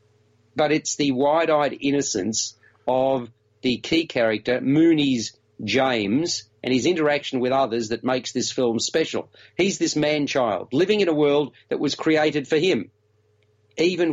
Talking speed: 145 wpm